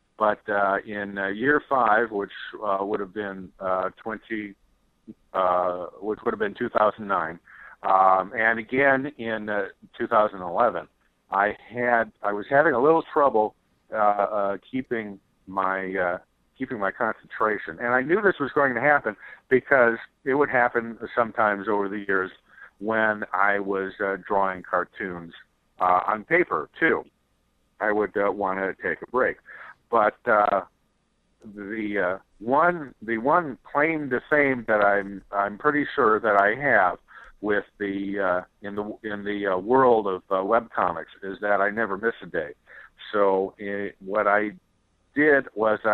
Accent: American